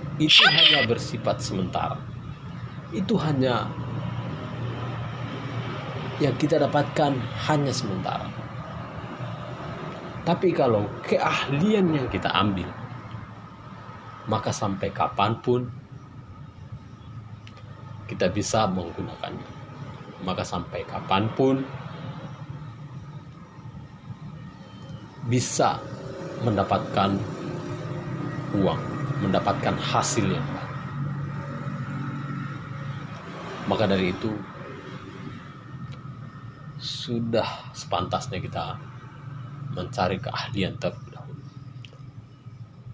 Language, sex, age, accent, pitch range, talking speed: Indonesian, male, 30-49, native, 120-145 Hz, 55 wpm